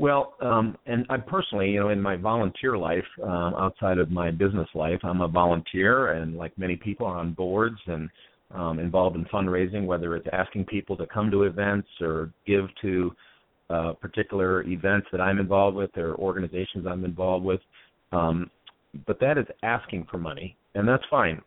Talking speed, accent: 180 wpm, American